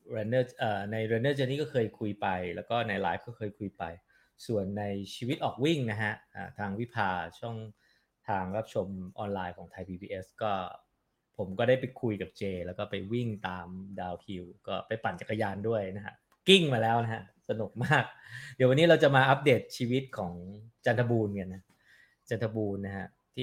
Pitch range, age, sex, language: 95-115 Hz, 20-39, male, English